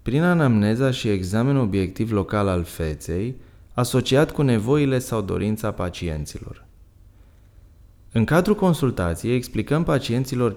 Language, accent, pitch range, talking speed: Romanian, native, 95-130 Hz, 110 wpm